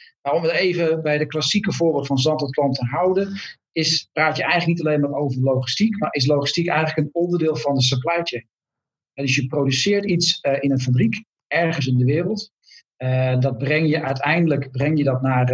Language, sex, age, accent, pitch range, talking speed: Dutch, male, 50-69, Dutch, 130-155 Hz, 210 wpm